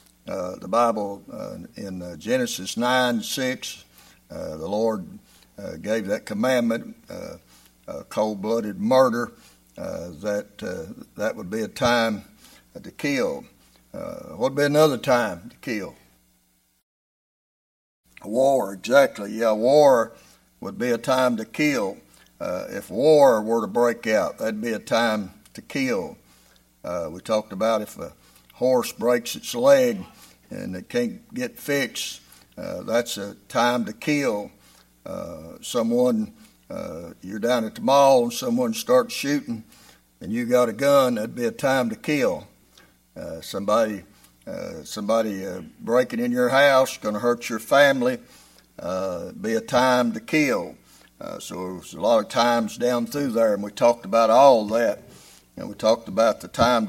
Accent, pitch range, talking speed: American, 105-140 Hz, 155 wpm